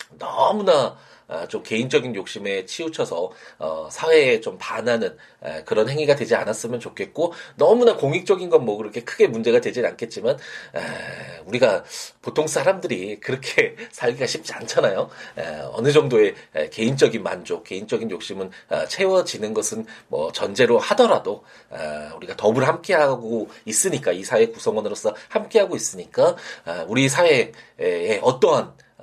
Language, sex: Korean, male